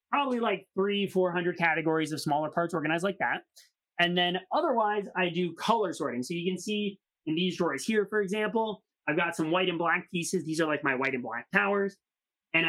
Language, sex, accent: English, male, American